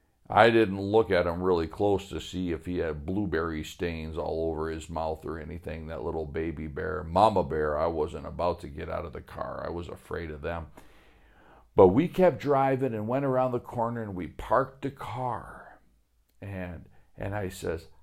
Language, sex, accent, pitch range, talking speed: English, male, American, 85-110 Hz, 195 wpm